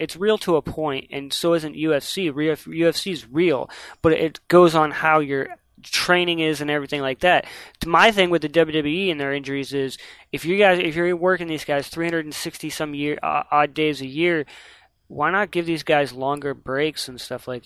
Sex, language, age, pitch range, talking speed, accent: male, English, 20-39, 145-170 Hz, 195 wpm, American